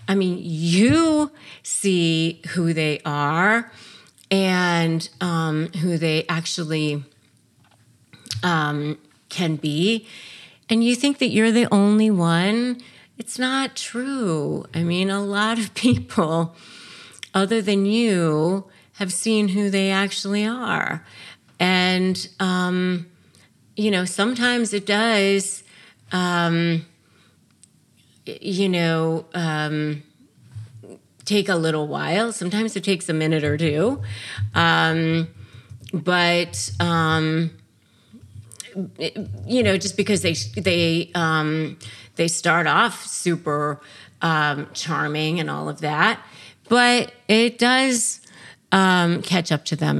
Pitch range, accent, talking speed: 155-200 Hz, American, 110 wpm